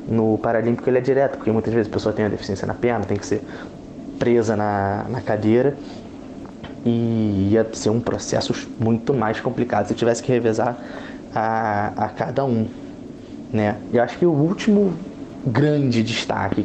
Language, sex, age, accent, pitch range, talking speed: Portuguese, male, 20-39, Brazilian, 105-120 Hz, 175 wpm